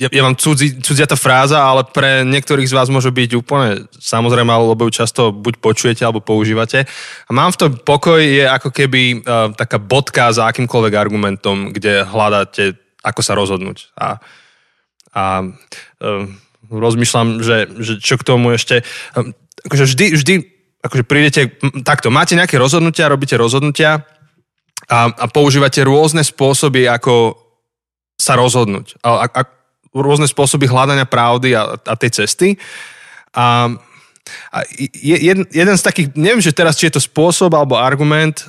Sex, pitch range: male, 115-150 Hz